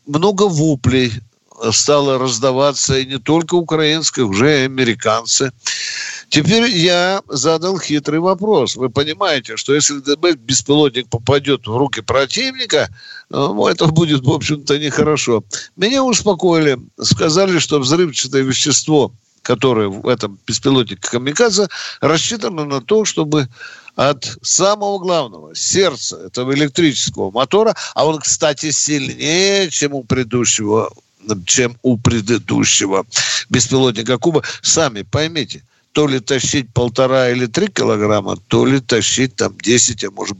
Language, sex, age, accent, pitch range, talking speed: Russian, male, 60-79, native, 125-165 Hz, 120 wpm